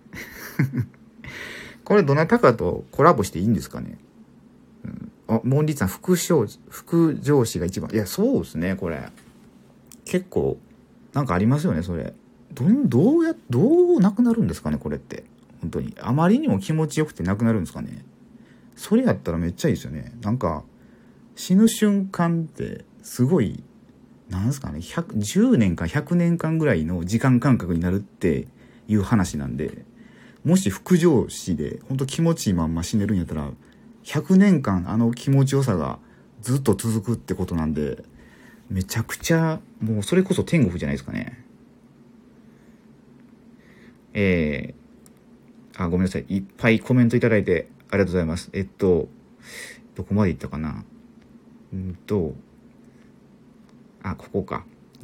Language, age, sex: Japanese, 40-59, male